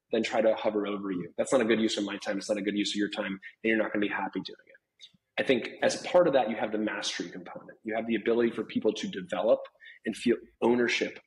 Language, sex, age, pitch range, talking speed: English, male, 30-49, 105-115 Hz, 280 wpm